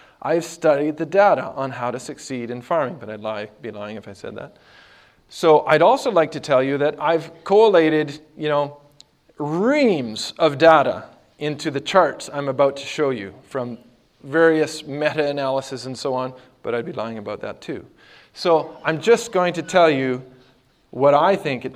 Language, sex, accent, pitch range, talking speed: English, male, American, 125-160 Hz, 185 wpm